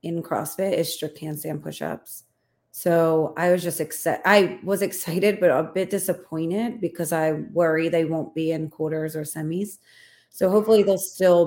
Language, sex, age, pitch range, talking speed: English, female, 30-49, 160-190 Hz, 165 wpm